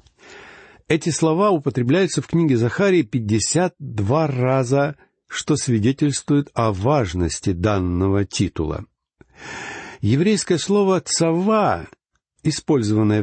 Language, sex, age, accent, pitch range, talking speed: Russian, male, 60-79, native, 110-165 Hz, 85 wpm